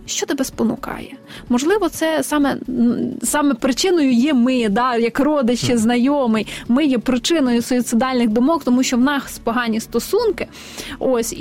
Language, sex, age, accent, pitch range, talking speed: Ukrainian, female, 20-39, native, 225-270 Hz, 135 wpm